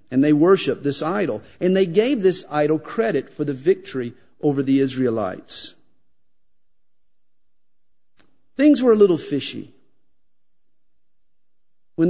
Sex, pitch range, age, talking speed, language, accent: male, 135-205 Hz, 50-69, 115 wpm, English, American